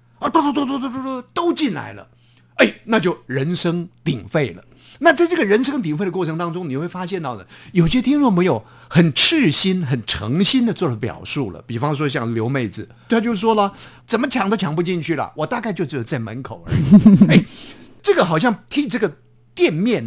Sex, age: male, 50-69